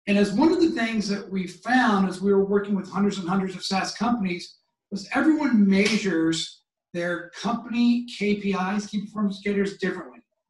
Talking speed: 170 wpm